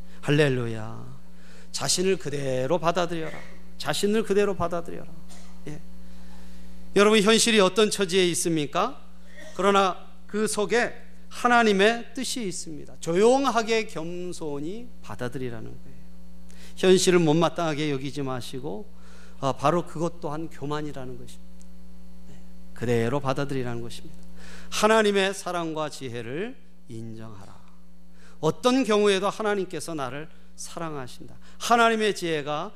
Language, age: Korean, 40-59